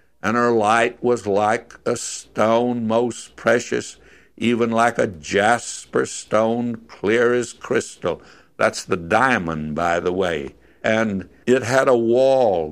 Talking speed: 130 wpm